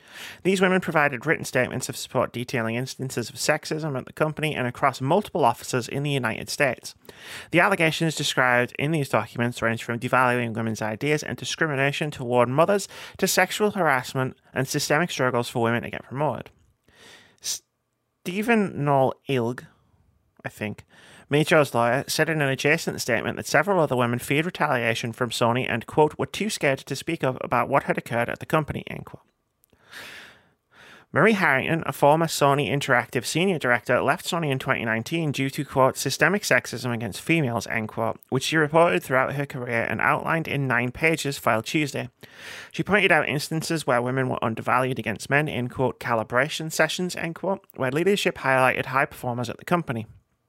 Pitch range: 120-160 Hz